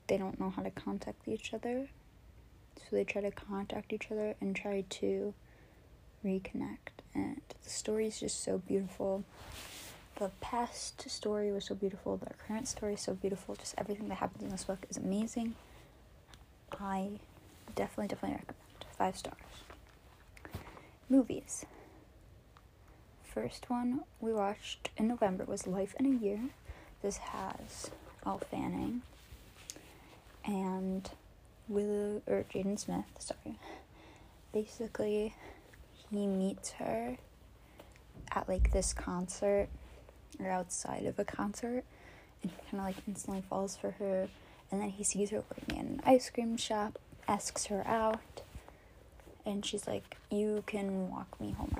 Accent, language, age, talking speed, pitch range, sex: American, English, 20-39, 135 wpm, 190-225 Hz, female